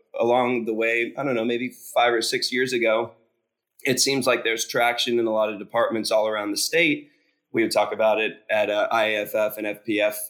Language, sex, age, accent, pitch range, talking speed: English, male, 20-39, American, 110-140 Hz, 220 wpm